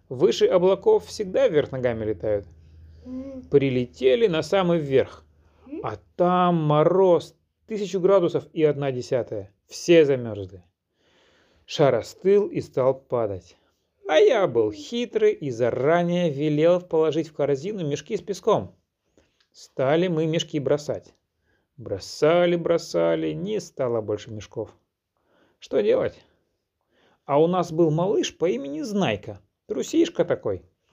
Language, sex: Russian, male